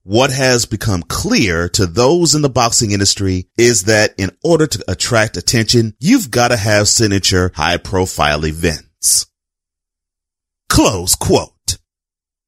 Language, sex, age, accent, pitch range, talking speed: English, male, 30-49, American, 85-120 Hz, 125 wpm